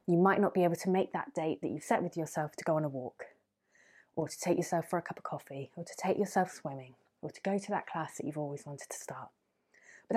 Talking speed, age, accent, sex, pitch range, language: 270 wpm, 20-39, British, female, 155-205 Hz, English